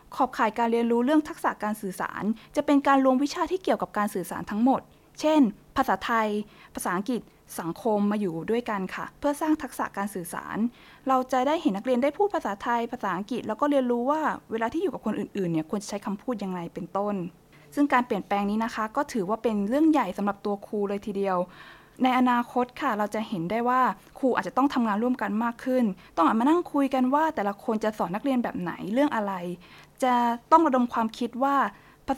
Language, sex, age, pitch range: Thai, female, 20-39, 205-265 Hz